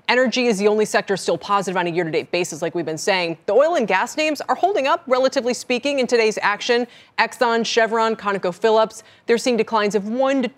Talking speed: 215 wpm